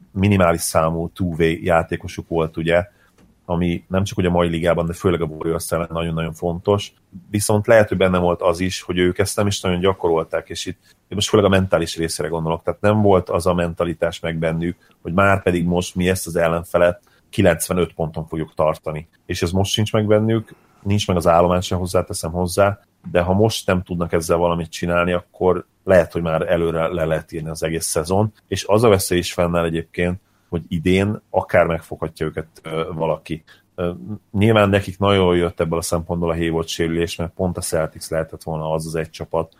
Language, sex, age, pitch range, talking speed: Hungarian, male, 30-49, 85-95 Hz, 190 wpm